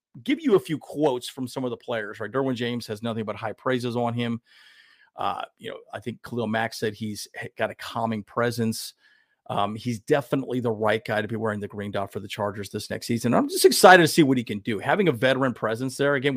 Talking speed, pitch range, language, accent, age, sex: 240 wpm, 110-135 Hz, English, American, 40-59, male